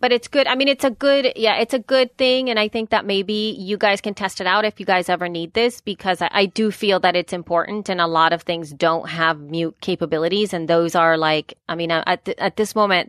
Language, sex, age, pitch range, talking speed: English, female, 30-49, 165-200 Hz, 265 wpm